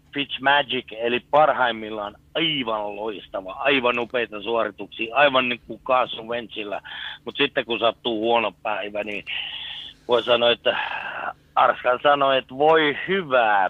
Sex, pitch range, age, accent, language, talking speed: male, 115-140 Hz, 60-79, native, Finnish, 125 wpm